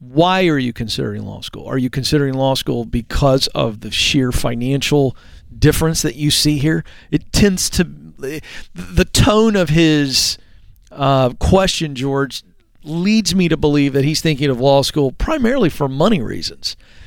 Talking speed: 160 wpm